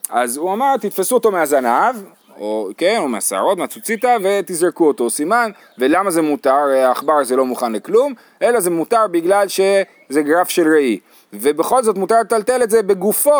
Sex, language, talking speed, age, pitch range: male, Hebrew, 165 wpm, 30-49, 155-220 Hz